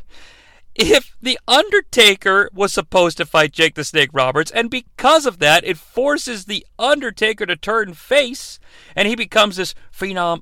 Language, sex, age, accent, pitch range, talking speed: English, male, 40-59, American, 170-250 Hz, 155 wpm